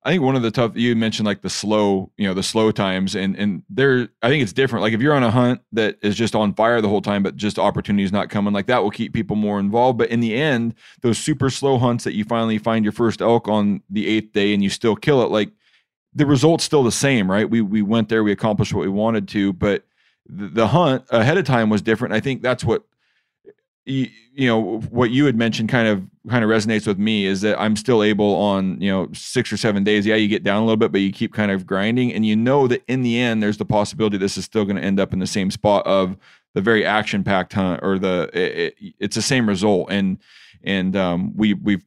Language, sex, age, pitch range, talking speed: English, male, 30-49, 100-115 Hz, 255 wpm